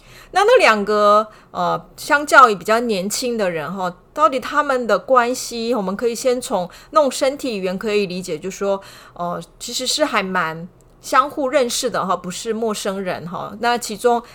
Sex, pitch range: female, 175-250 Hz